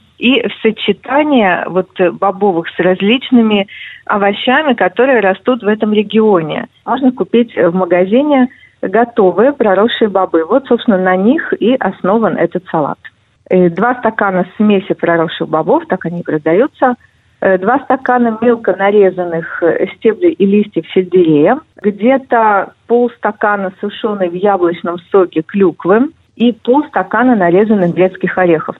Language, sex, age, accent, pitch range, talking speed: Russian, female, 40-59, native, 180-230 Hz, 115 wpm